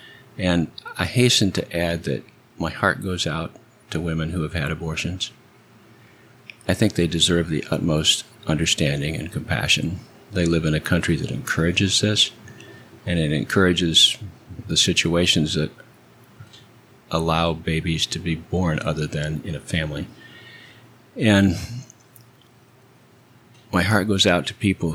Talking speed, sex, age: 135 wpm, male, 50-69